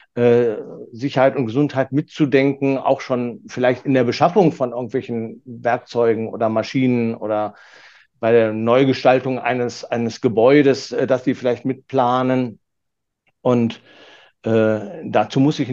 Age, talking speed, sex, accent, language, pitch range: 50-69, 120 wpm, male, German, German, 120-145 Hz